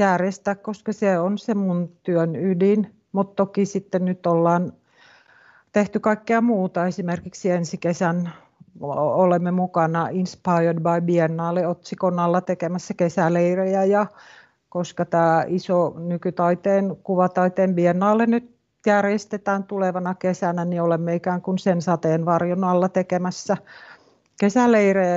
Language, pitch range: Finnish, 175-195 Hz